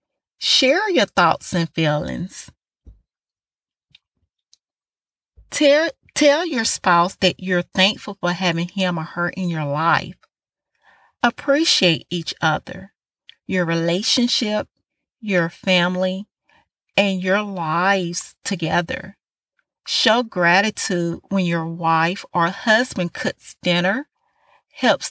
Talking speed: 100 wpm